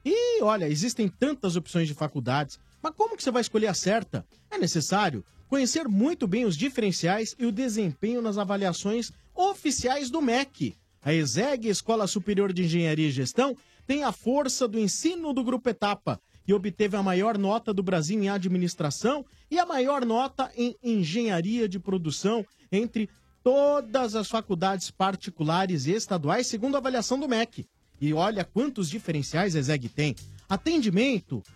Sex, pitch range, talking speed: male, 175-250 Hz, 160 wpm